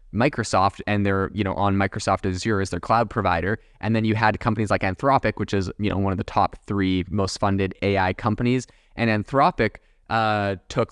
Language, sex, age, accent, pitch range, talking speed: English, male, 20-39, American, 100-120 Hz, 200 wpm